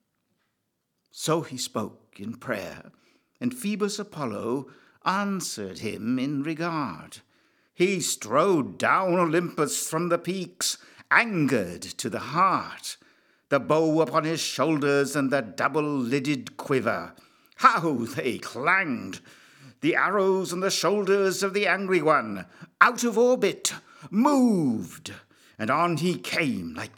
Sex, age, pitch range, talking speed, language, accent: male, 60-79, 145-190 Hz, 120 wpm, English, British